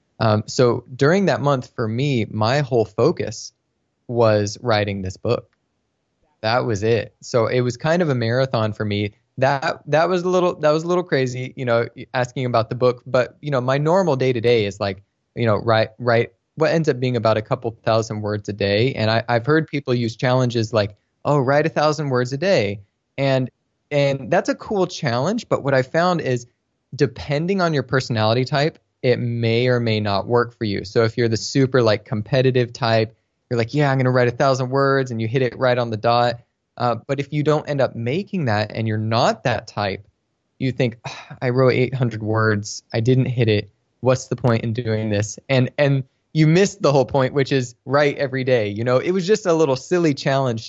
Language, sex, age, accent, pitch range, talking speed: English, male, 20-39, American, 115-140 Hz, 215 wpm